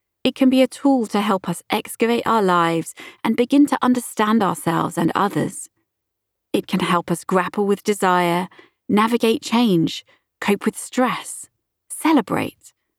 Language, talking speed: English, 145 wpm